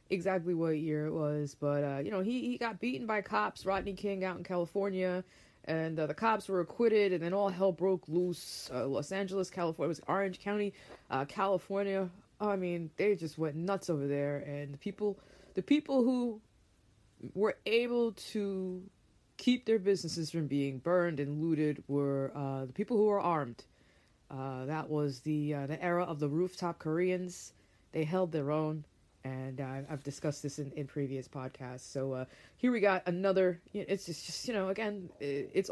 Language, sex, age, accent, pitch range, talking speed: English, female, 20-39, American, 145-195 Hz, 185 wpm